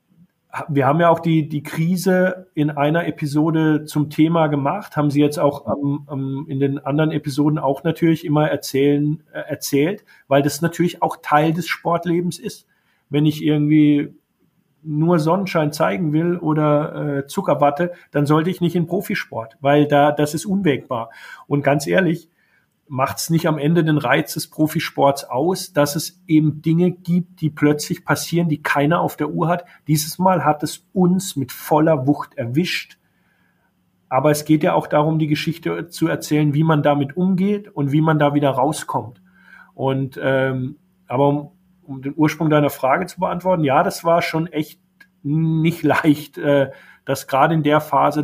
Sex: male